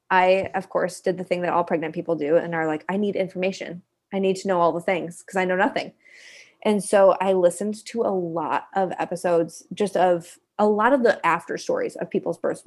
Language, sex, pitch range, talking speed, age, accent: English, female, 175-225 Hz, 225 wpm, 20-39, American